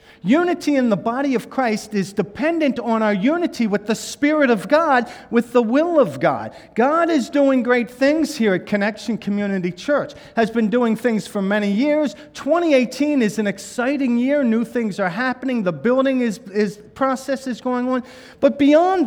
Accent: American